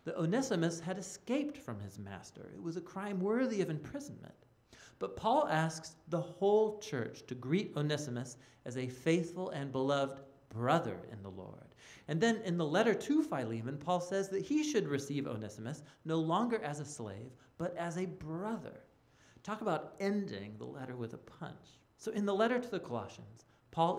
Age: 40-59